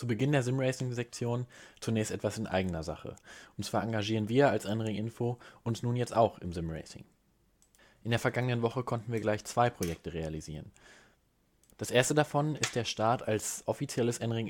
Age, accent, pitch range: 20-39, German, 105-120 Hz